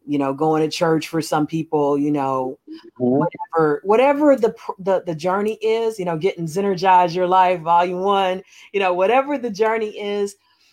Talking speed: 175 wpm